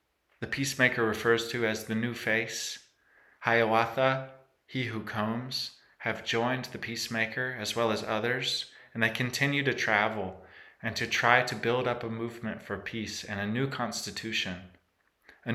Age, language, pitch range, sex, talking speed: 30-49, English, 105-135 Hz, male, 155 wpm